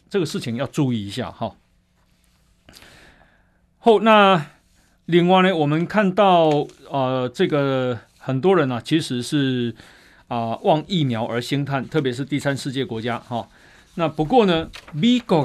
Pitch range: 125-175 Hz